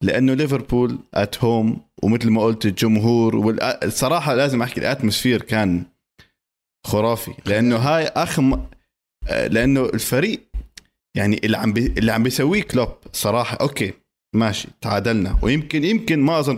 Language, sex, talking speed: Arabic, male, 125 wpm